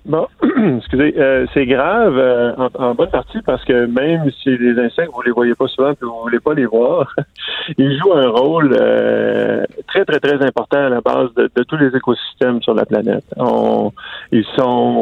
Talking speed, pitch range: 205 wpm, 110-130 Hz